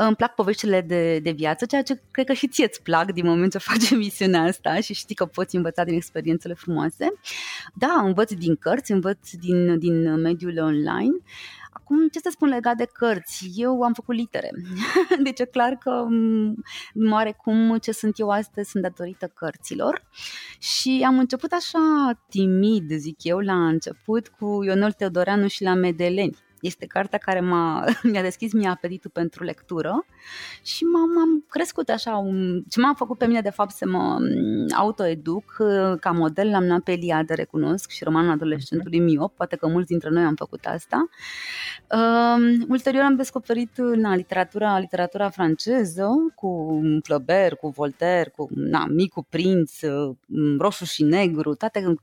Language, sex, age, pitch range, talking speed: Romanian, female, 20-39, 170-235 Hz, 160 wpm